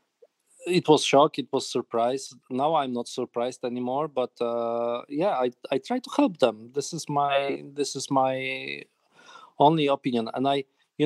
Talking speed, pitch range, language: 170 wpm, 110-135 Hz, Slovak